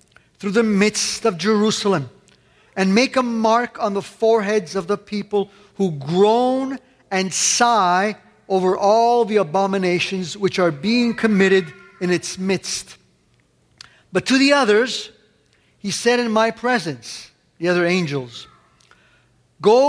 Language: English